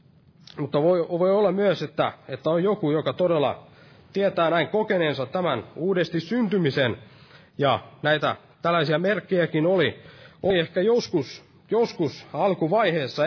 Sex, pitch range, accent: male, 140-175 Hz, native